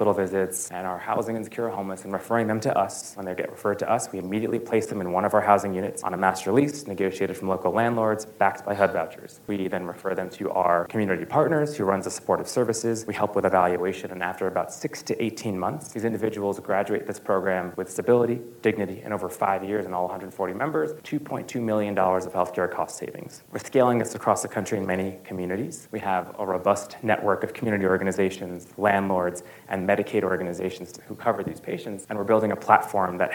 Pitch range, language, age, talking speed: 95-110 Hz, English, 30-49, 210 wpm